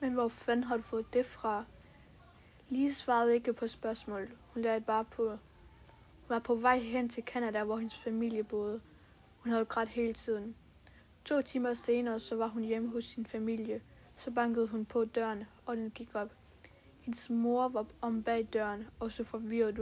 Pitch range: 220-240 Hz